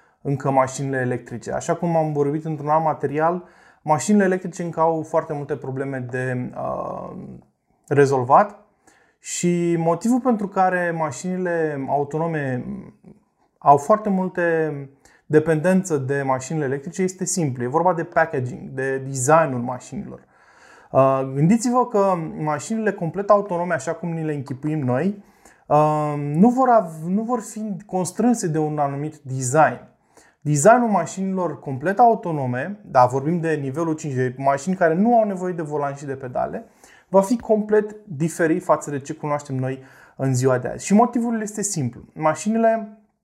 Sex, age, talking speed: male, 20-39, 135 wpm